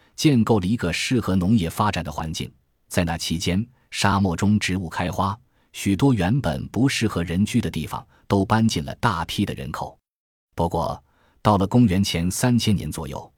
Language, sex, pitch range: Chinese, male, 85-110 Hz